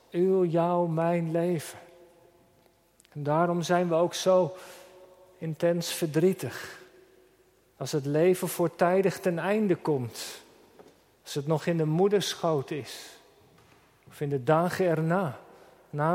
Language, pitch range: Dutch, 155-195 Hz